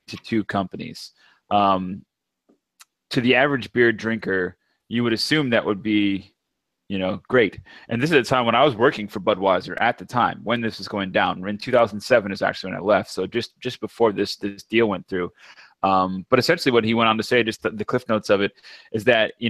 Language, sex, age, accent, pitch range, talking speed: English, male, 20-39, American, 100-120 Hz, 220 wpm